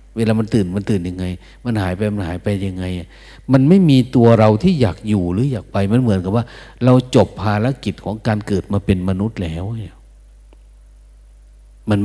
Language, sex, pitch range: Thai, male, 95-125 Hz